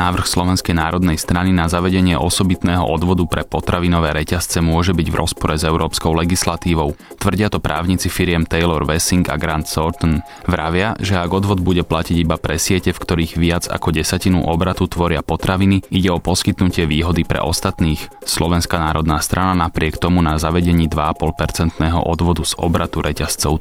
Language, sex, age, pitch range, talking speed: Slovak, male, 20-39, 80-90 Hz, 160 wpm